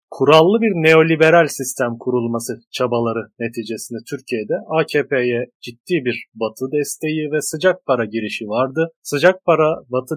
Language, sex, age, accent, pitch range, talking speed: Turkish, male, 40-59, native, 115-140 Hz, 125 wpm